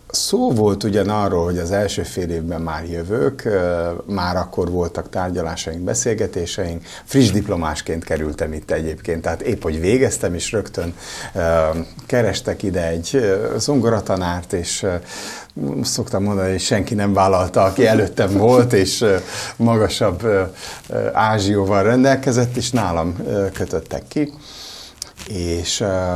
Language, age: Hungarian, 60-79